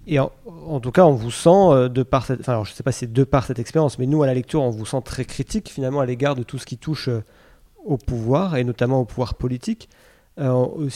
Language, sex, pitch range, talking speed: French, male, 125-150 Hz, 265 wpm